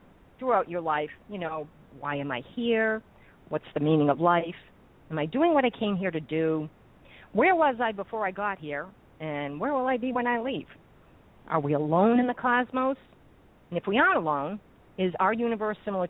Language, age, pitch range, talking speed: English, 50-69, 155-220 Hz, 200 wpm